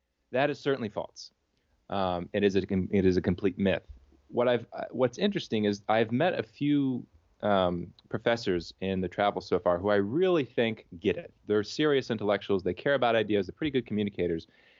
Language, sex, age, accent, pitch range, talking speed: English, male, 30-49, American, 95-130 Hz, 195 wpm